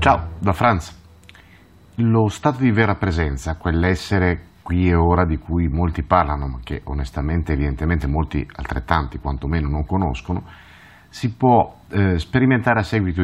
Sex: male